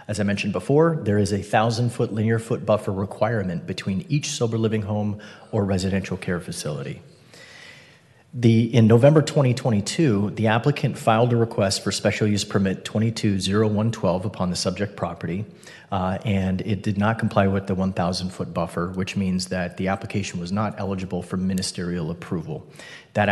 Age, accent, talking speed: 30-49, American, 160 wpm